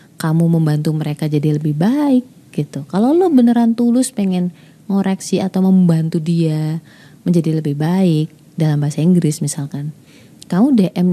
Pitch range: 155-190 Hz